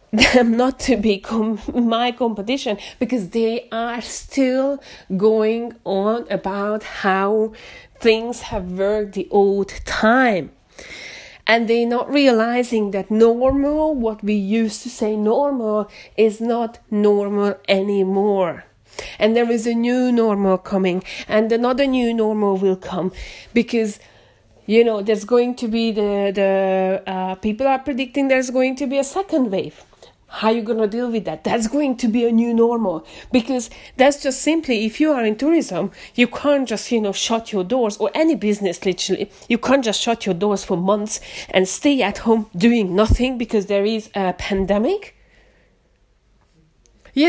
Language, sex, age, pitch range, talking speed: English, female, 30-49, 200-250 Hz, 160 wpm